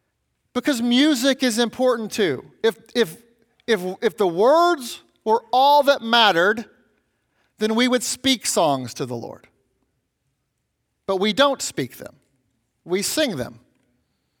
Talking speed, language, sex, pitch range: 130 wpm, English, male, 190-245 Hz